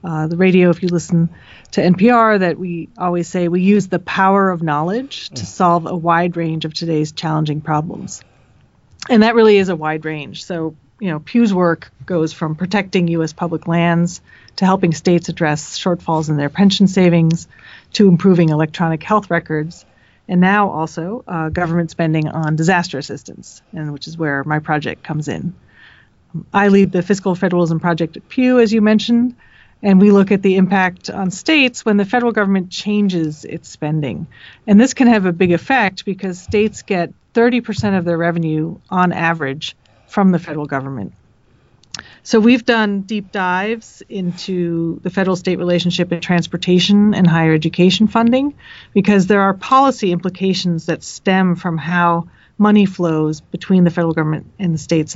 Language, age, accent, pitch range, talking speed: English, 30-49, American, 160-200 Hz, 170 wpm